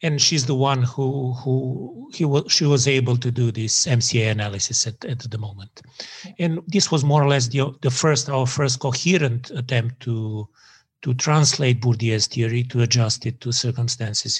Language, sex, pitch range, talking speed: English, male, 125-155 Hz, 180 wpm